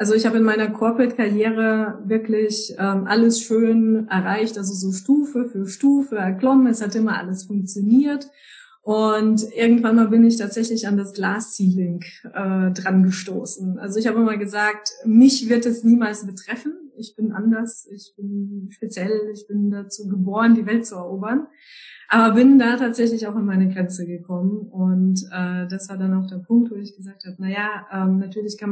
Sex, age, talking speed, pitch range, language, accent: female, 20-39, 175 wpm, 190-225 Hz, German, German